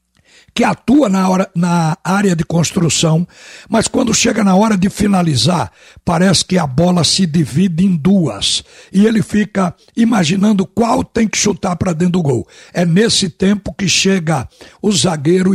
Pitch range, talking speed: 155-195 Hz, 160 wpm